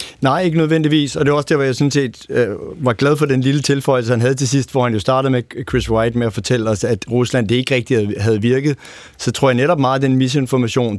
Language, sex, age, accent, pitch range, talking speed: Danish, male, 30-49, native, 115-135 Hz, 260 wpm